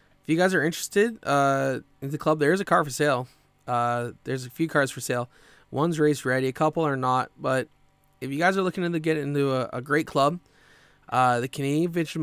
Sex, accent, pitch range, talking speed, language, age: male, American, 125-150 Hz, 225 wpm, English, 20-39